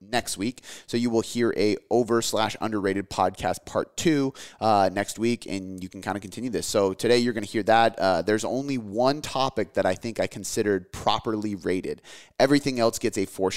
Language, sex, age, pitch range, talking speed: English, male, 30-49, 100-120 Hz, 210 wpm